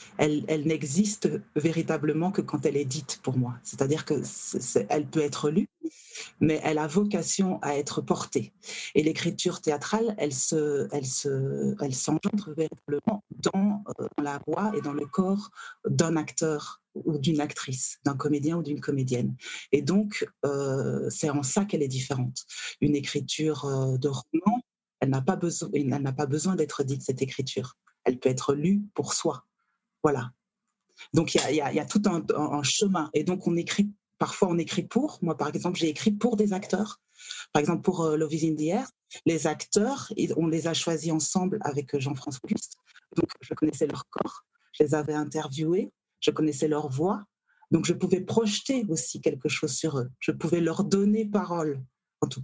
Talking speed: 185 wpm